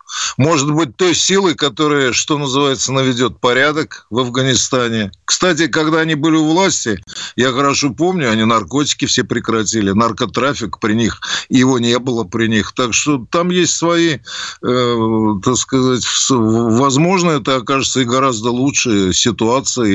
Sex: male